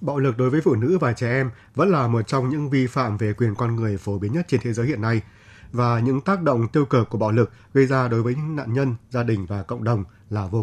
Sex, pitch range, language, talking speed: male, 110-135 Hz, Vietnamese, 290 wpm